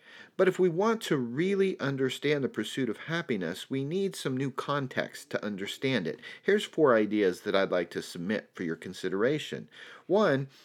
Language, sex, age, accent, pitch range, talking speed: English, male, 40-59, American, 120-160 Hz, 175 wpm